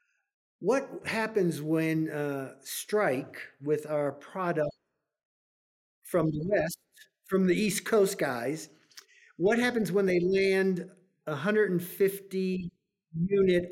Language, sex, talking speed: English, male, 95 wpm